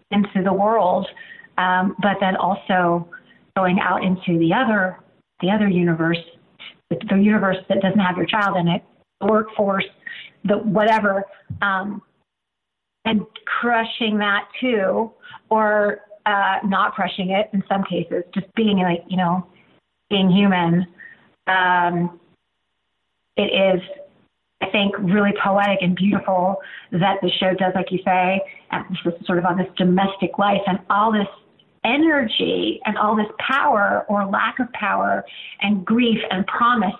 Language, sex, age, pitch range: English, female, 30-49, 185-210 Hz